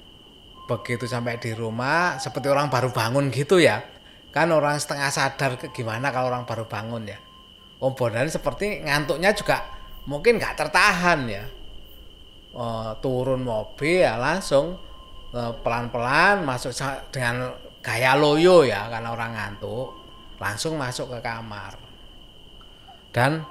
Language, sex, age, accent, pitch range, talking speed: Indonesian, male, 20-39, native, 120-155 Hz, 125 wpm